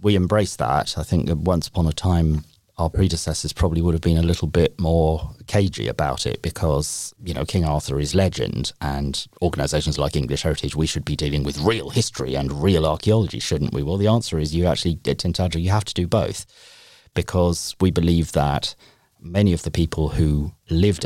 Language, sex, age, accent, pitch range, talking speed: English, male, 40-59, British, 75-90 Hz, 200 wpm